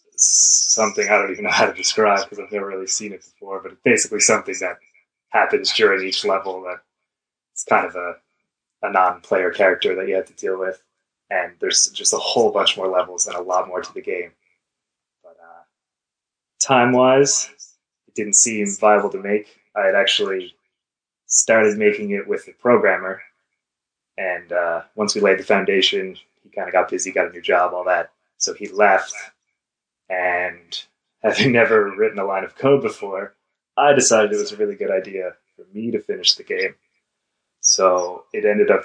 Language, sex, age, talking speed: English, male, 20-39, 185 wpm